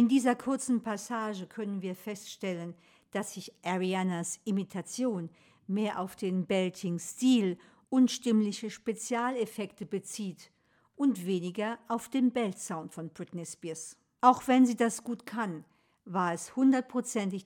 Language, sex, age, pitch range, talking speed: German, female, 50-69, 175-225 Hz, 125 wpm